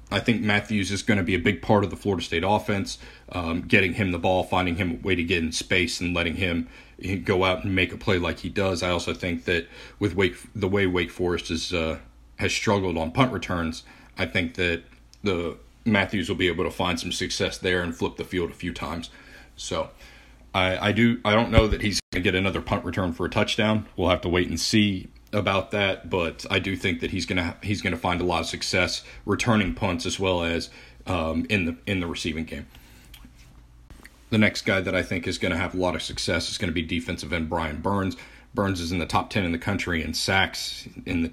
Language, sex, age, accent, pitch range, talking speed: English, male, 40-59, American, 85-105 Hz, 235 wpm